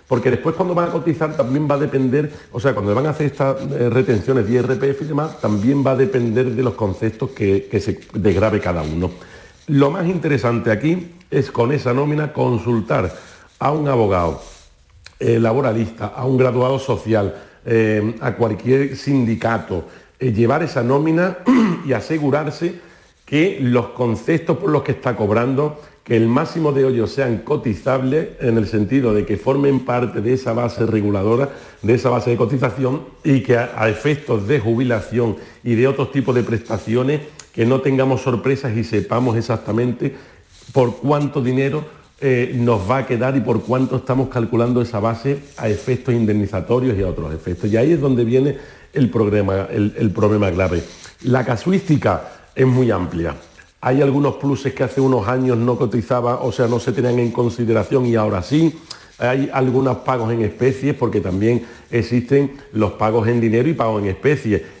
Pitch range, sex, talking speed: 110-135 Hz, male, 175 wpm